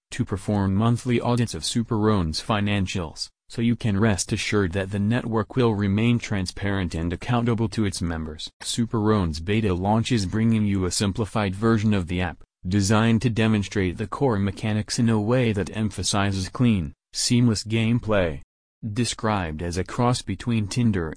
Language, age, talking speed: English, 30-49, 160 wpm